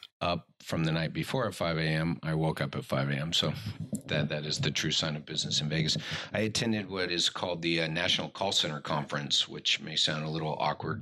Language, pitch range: English, 75-90 Hz